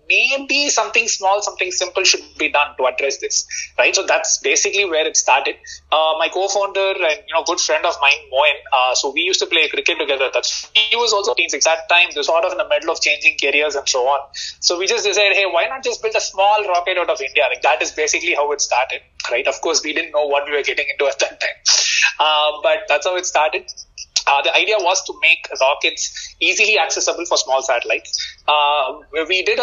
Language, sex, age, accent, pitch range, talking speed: English, male, 20-39, Indian, 150-240 Hz, 225 wpm